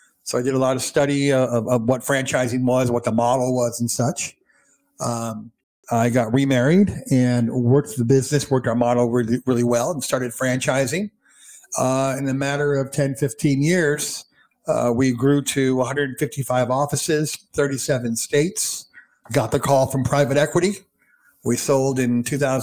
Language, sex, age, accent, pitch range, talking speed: English, male, 50-69, American, 120-145 Hz, 160 wpm